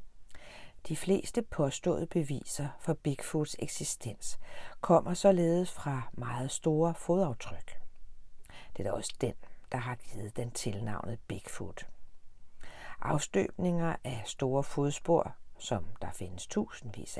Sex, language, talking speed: female, Danish, 110 wpm